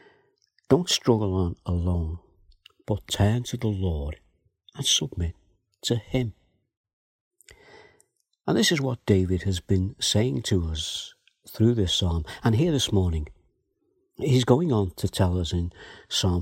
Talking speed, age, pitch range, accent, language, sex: 140 wpm, 60-79, 90-115 Hz, British, English, male